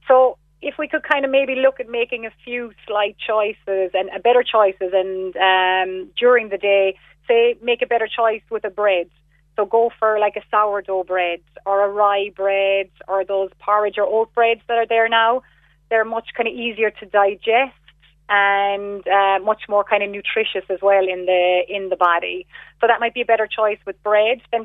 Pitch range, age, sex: 195-225 Hz, 30-49, female